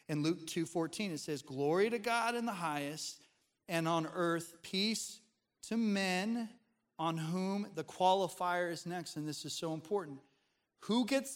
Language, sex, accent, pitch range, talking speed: English, male, American, 150-195 Hz, 165 wpm